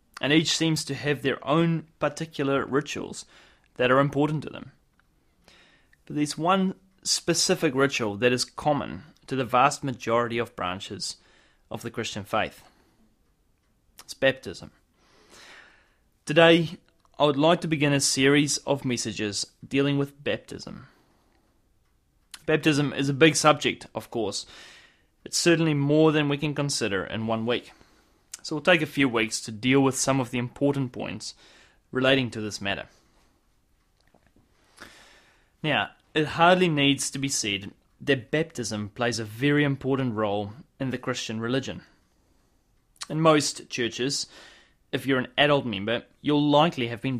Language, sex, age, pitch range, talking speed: English, male, 20-39, 120-150 Hz, 140 wpm